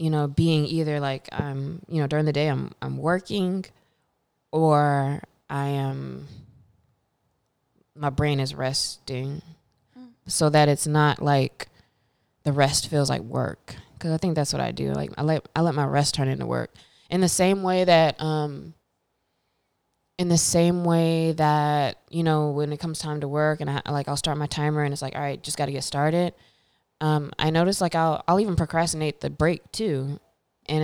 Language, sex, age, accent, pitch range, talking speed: English, female, 20-39, American, 140-165 Hz, 185 wpm